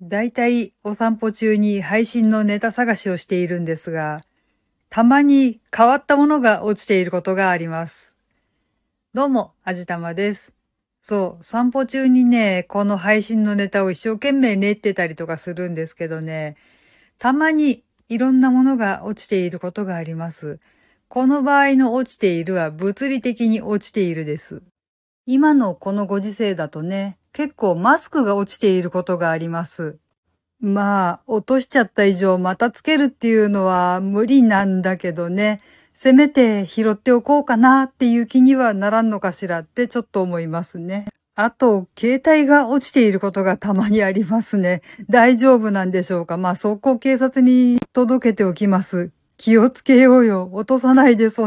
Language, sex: Japanese, female